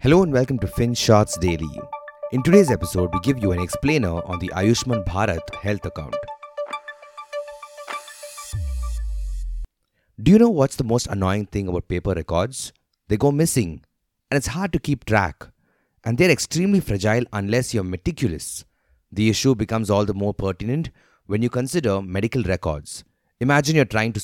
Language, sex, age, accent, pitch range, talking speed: English, male, 30-49, Indian, 95-135 Hz, 155 wpm